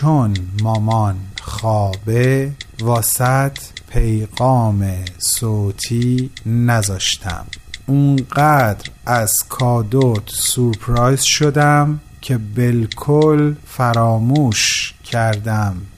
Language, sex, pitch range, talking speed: Persian, male, 105-120 Hz, 60 wpm